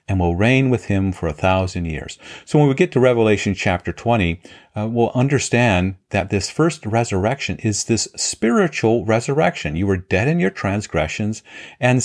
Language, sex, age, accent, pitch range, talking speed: English, male, 50-69, American, 90-115 Hz, 175 wpm